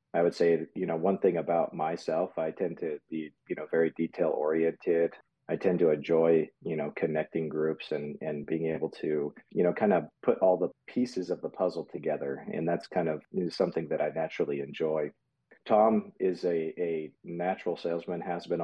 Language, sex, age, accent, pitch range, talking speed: English, male, 40-59, American, 80-85 Hz, 195 wpm